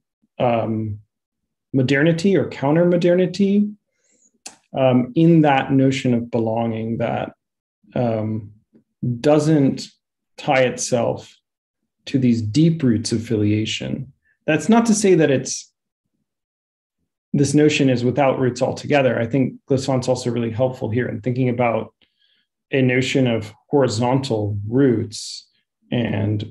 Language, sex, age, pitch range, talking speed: English, male, 30-49, 115-145 Hz, 110 wpm